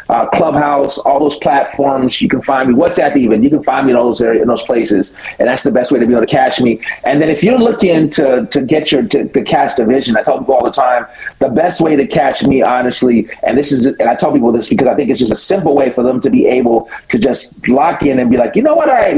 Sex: male